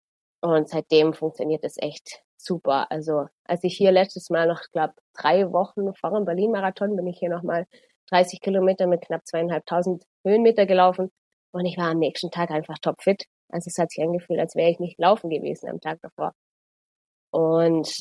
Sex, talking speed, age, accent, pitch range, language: female, 180 wpm, 20-39, German, 160-190 Hz, German